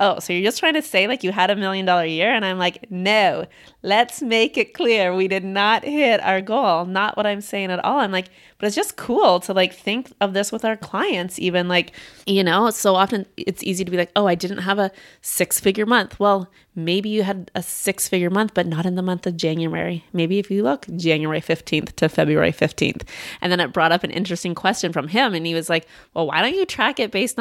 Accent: American